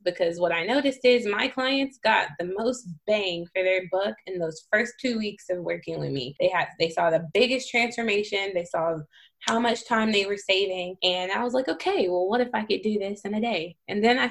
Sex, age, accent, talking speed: female, 20-39, American, 235 wpm